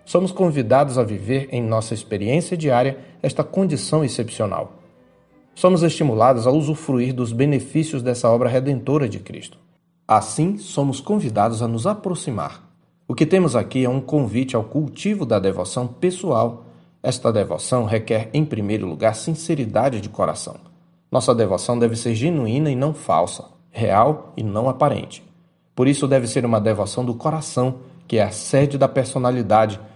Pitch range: 110-150 Hz